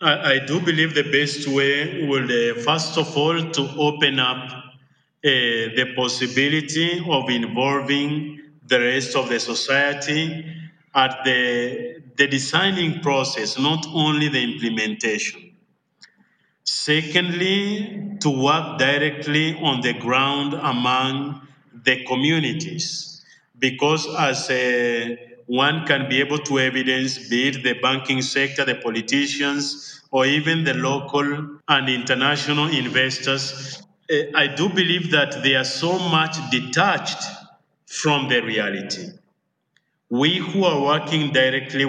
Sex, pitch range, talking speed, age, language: male, 130-155 Hz, 120 wpm, 50-69, English